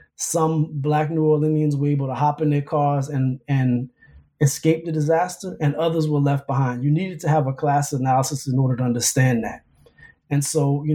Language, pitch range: English, 135-160 Hz